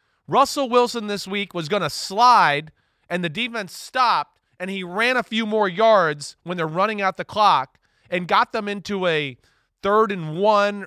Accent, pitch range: American, 170-220 Hz